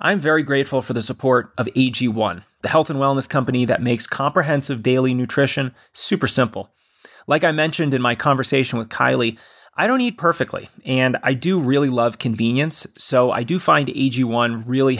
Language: English